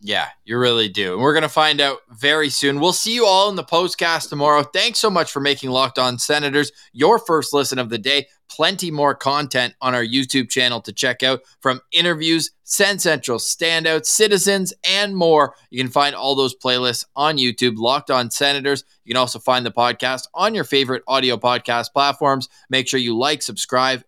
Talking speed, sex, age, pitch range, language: 200 wpm, male, 20-39, 130-170 Hz, English